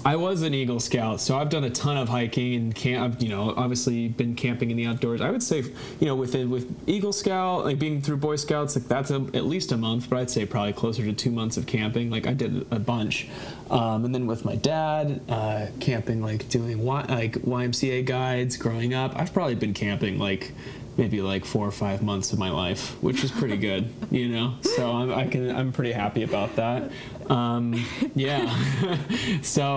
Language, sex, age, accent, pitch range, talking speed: English, male, 20-39, American, 115-130 Hz, 205 wpm